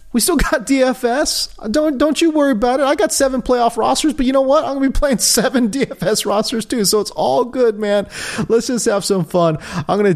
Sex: male